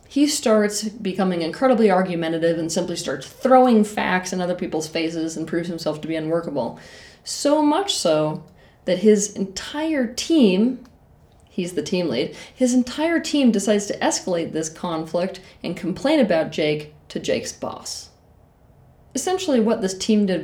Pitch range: 165-245 Hz